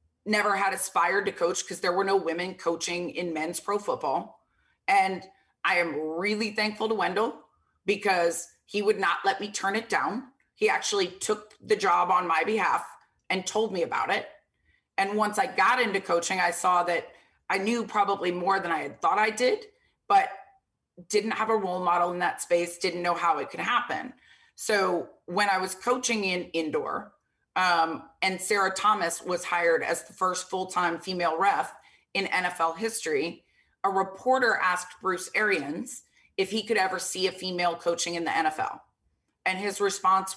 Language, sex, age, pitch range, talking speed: English, female, 30-49, 175-215 Hz, 175 wpm